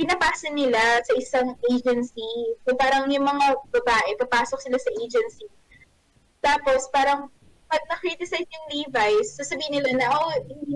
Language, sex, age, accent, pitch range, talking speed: Filipino, female, 20-39, native, 230-300 Hz, 145 wpm